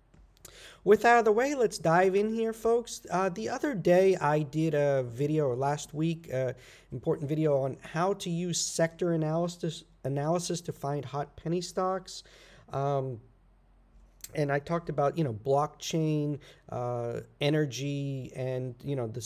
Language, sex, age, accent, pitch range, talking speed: English, male, 40-59, American, 135-165 Hz, 160 wpm